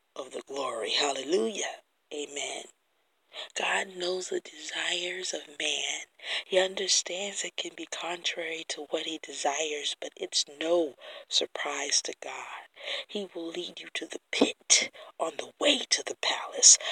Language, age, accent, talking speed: English, 40-59, American, 140 wpm